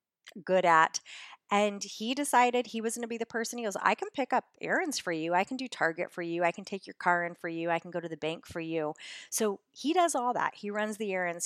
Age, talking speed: 40-59, 270 wpm